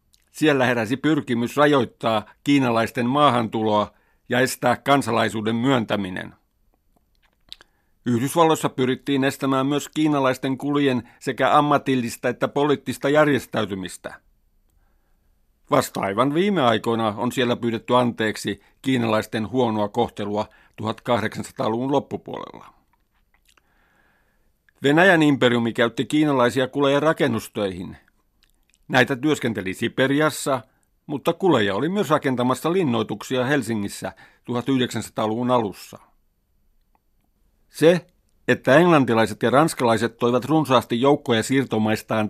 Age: 60-79